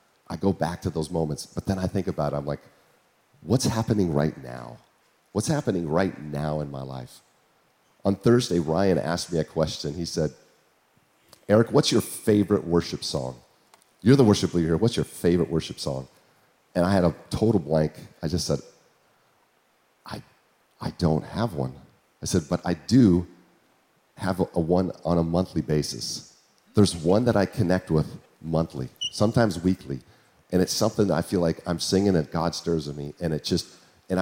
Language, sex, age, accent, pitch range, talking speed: English, male, 40-59, American, 80-95 Hz, 180 wpm